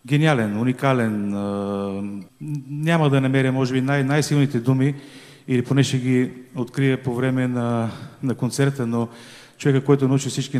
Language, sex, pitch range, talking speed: Bulgarian, male, 120-140 Hz, 140 wpm